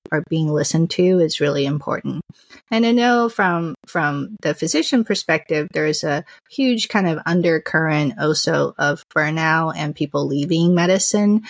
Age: 30-49